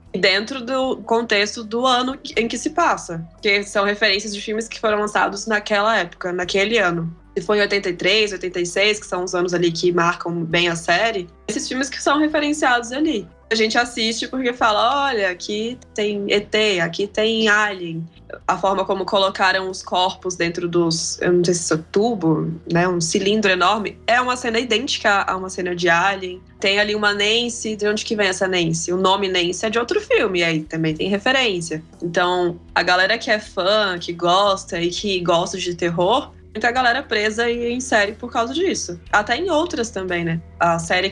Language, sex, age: Portuguese, female, 20-39